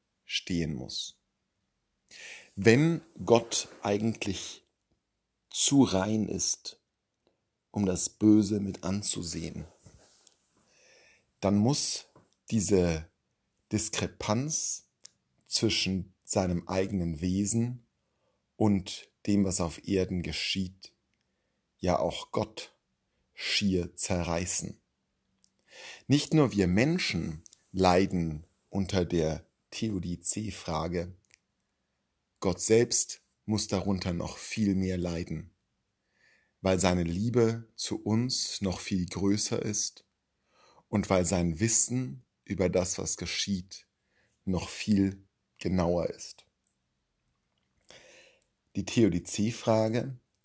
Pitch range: 85-110 Hz